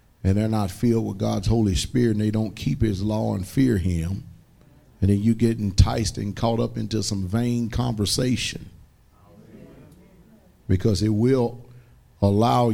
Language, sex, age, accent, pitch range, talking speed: English, male, 50-69, American, 100-120 Hz, 155 wpm